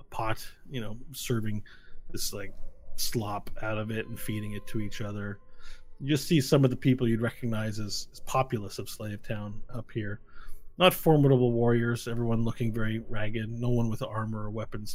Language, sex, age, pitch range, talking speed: English, male, 30-49, 105-125 Hz, 175 wpm